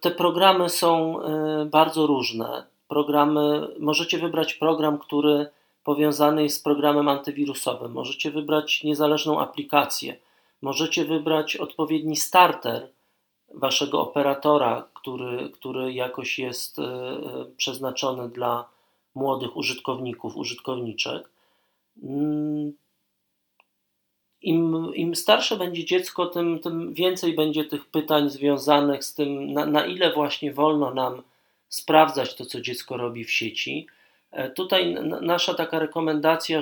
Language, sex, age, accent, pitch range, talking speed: Polish, male, 40-59, native, 140-160 Hz, 105 wpm